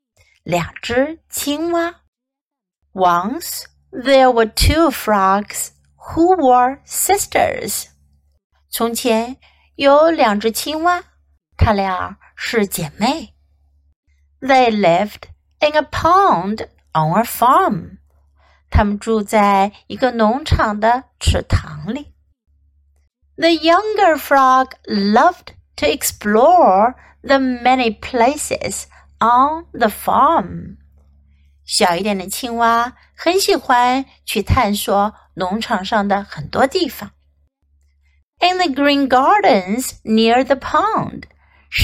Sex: female